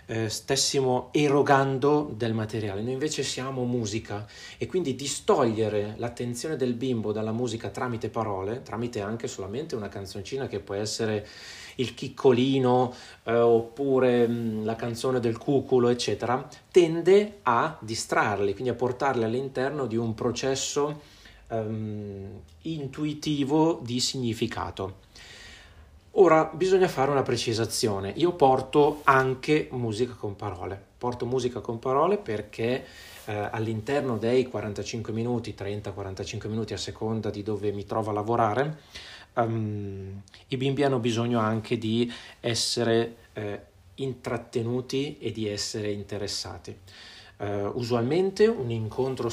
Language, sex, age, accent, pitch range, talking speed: Italian, male, 30-49, native, 105-130 Hz, 120 wpm